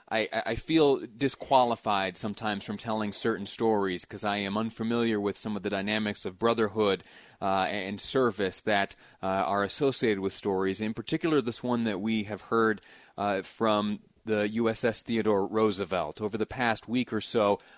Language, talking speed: English, 170 wpm